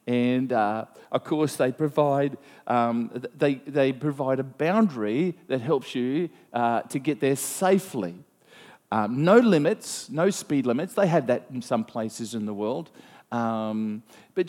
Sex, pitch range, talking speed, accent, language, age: male, 130-190 Hz, 155 wpm, Australian, English, 40-59